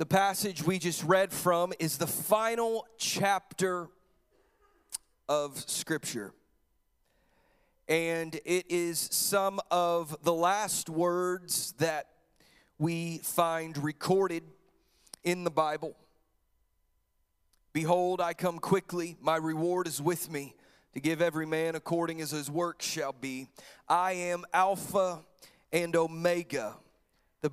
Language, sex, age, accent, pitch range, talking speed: English, male, 30-49, American, 155-185 Hz, 115 wpm